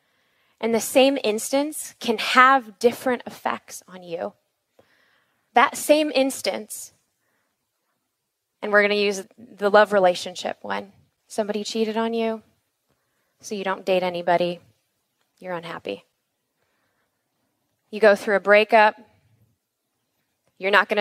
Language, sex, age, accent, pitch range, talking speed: English, female, 20-39, American, 205-260 Hz, 115 wpm